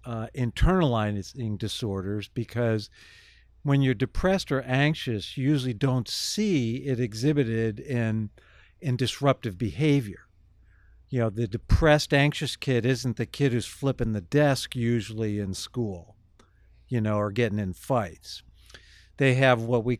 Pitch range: 105-145 Hz